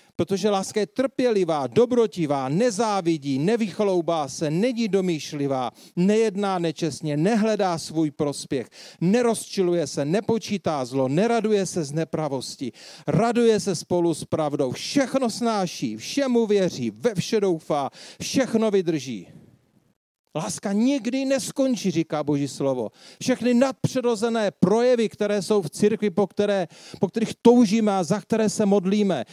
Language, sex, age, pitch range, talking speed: Czech, male, 40-59, 170-230 Hz, 125 wpm